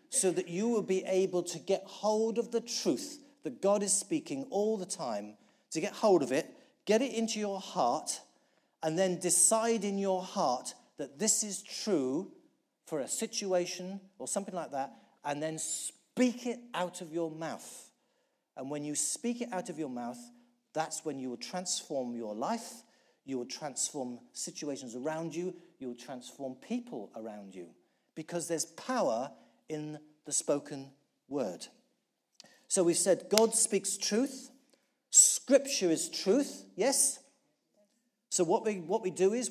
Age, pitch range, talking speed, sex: 40-59, 155-230 Hz, 160 wpm, male